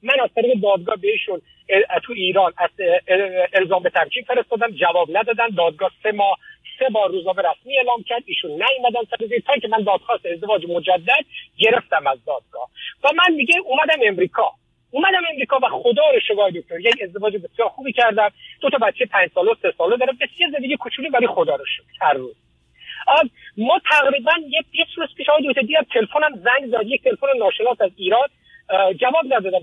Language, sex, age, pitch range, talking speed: Persian, male, 50-69, 215-310 Hz, 175 wpm